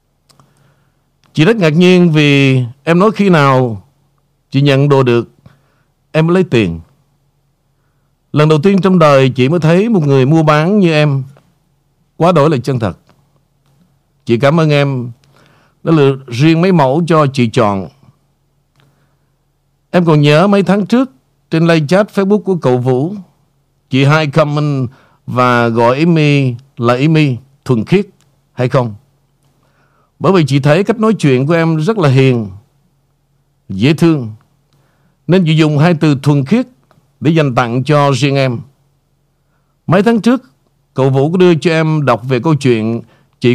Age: 60-79